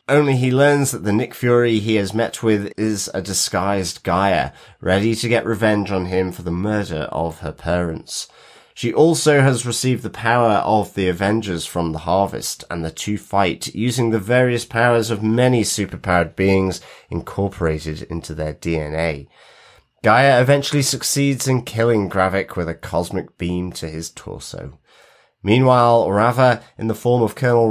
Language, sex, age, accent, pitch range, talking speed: English, male, 30-49, British, 95-125 Hz, 160 wpm